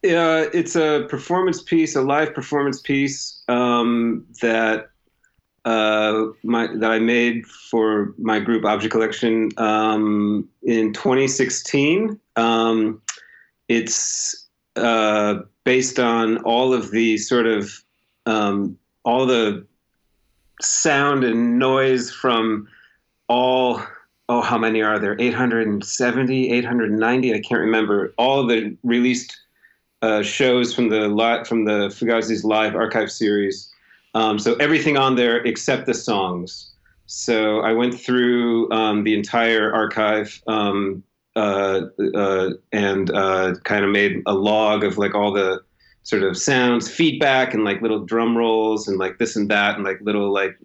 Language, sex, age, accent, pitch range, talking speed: English, male, 30-49, American, 105-120 Hz, 145 wpm